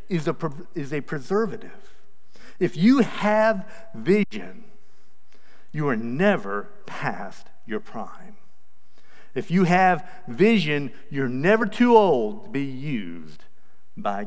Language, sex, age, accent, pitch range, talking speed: English, male, 50-69, American, 130-205 Hz, 115 wpm